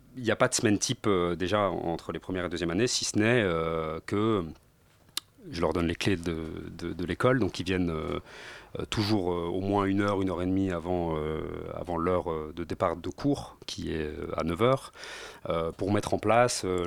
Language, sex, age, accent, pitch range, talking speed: French, male, 40-59, French, 80-100 Hz, 220 wpm